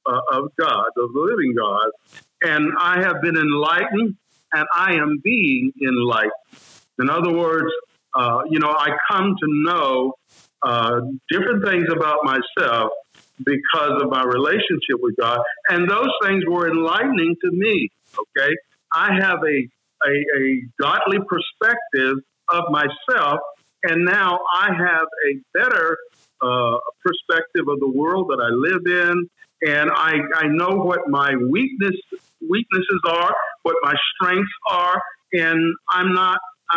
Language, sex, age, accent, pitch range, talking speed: English, male, 50-69, American, 145-190 Hz, 140 wpm